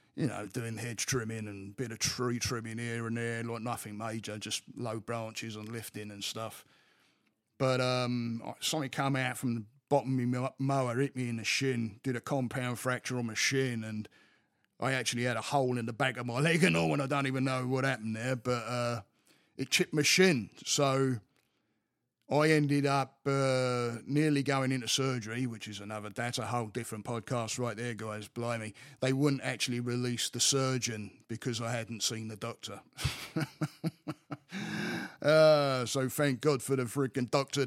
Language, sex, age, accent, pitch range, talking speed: English, male, 30-49, British, 115-135 Hz, 185 wpm